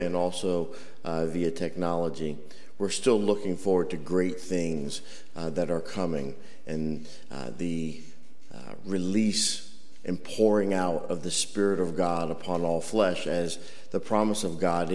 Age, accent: 50-69, American